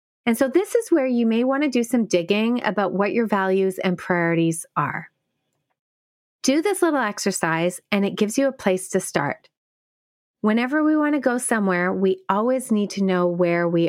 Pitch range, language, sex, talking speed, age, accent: 180-250 Hz, English, female, 190 wpm, 30-49, American